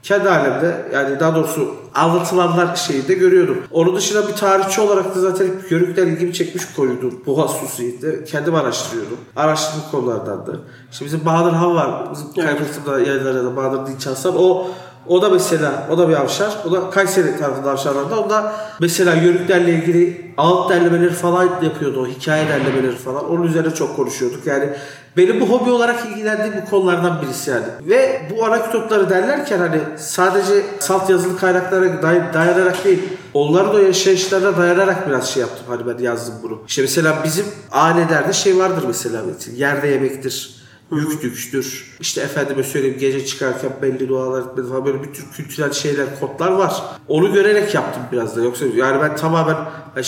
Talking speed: 165 wpm